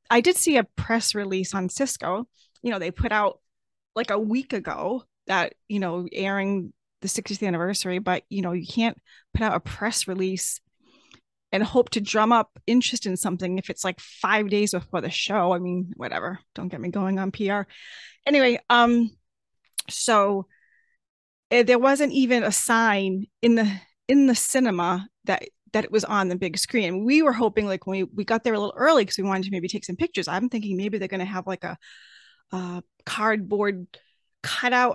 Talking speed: 195 wpm